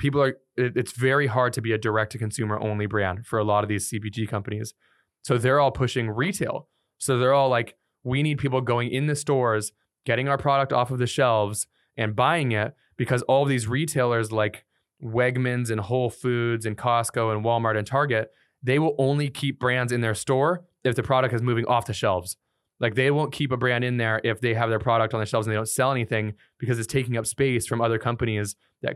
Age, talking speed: 20-39, 225 wpm